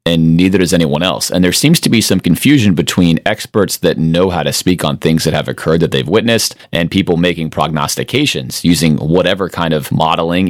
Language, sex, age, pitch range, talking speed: English, male, 30-49, 75-95 Hz, 205 wpm